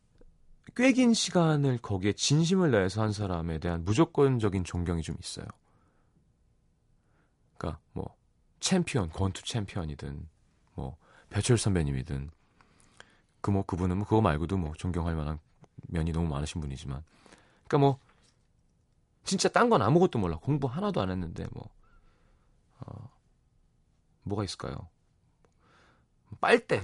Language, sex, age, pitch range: Korean, male, 30-49, 85-135 Hz